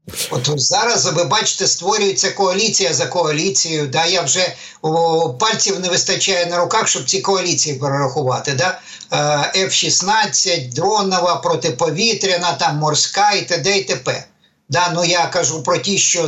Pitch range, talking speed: 150-190 Hz, 140 wpm